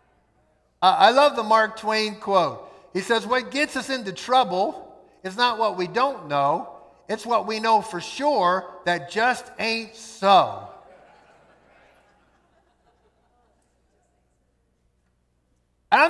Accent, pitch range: American, 180-235 Hz